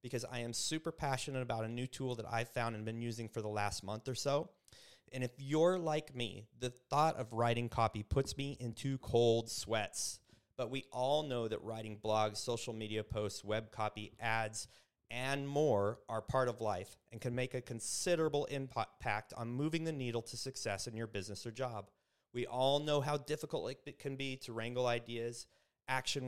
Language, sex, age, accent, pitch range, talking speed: English, male, 30-49, American, 115-140 Hz, 195 wpm